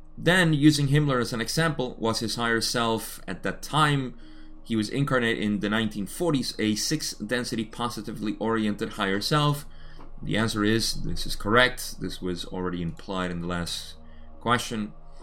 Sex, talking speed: male, 160 wpm